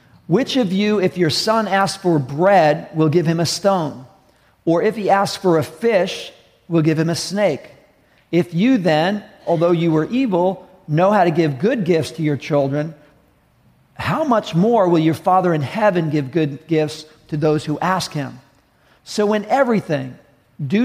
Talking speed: 180 wpm